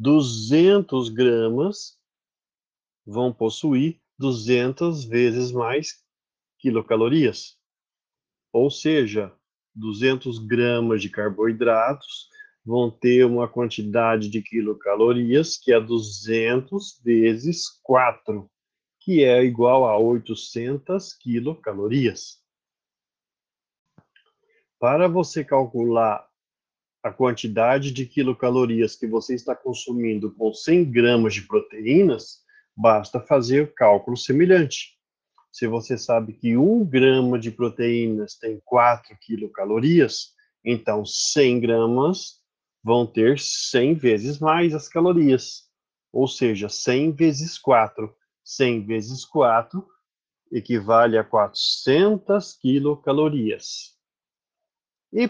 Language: Portuguese